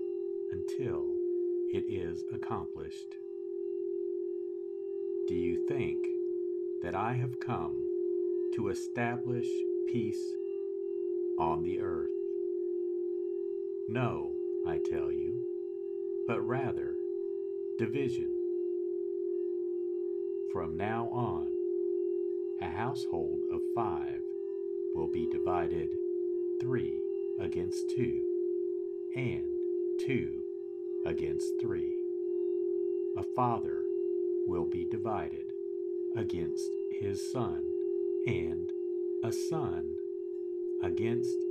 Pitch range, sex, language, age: 360-375 Hz, male, English, 50-69